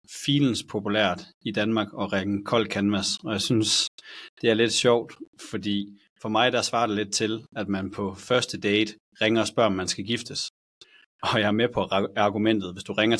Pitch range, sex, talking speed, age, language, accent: 100-120 Hz, male, 205 wpm, 30-49, Danish, native